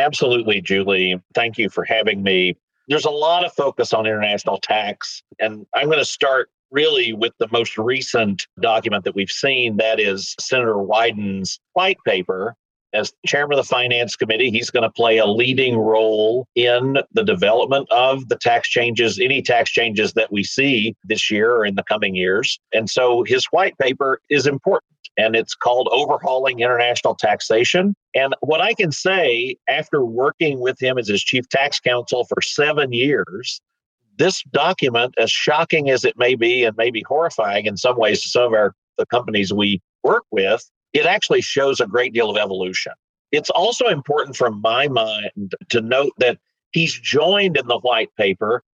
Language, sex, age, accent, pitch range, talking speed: English, male, 40-59, American, 110-145 Hz, 175 wpm